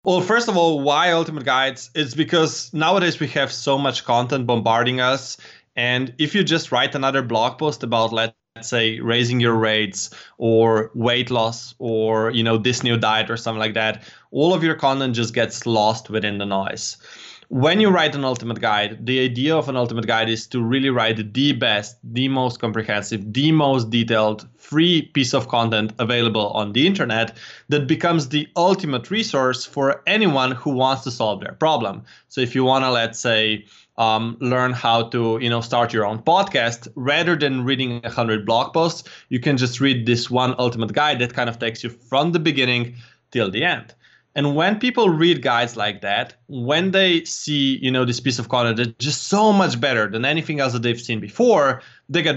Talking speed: 195 wpm